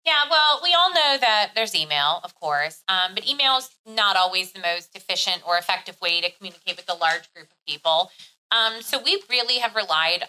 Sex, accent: female, American